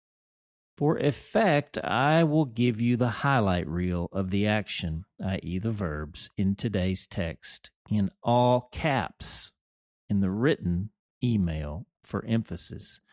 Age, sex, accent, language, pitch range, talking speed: 50-69, male, American, English, 95-130 Hz, 125 wpm